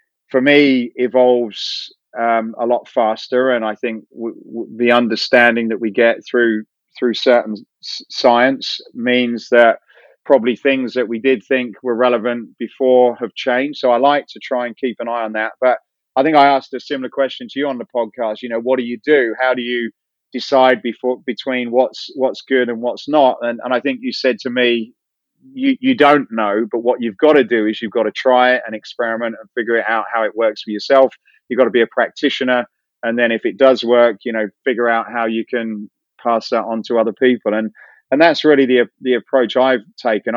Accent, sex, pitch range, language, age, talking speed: British, male, 115-130 Hz, English, 30-49, 215 wpm